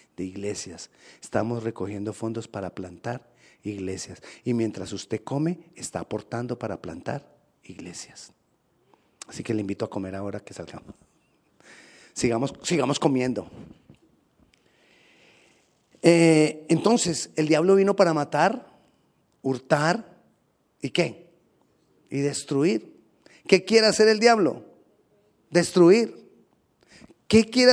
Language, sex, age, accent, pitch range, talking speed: Spanish, male, 40-59, Mexican, 110-180 Hz, 105 wpm